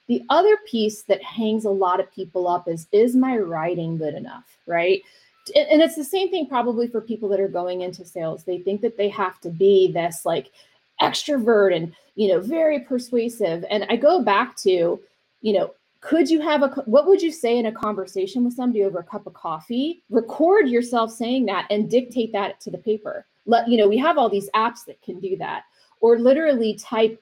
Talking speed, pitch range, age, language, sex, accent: 210 wpm, 200-255 Hz, 30-49, English, female, American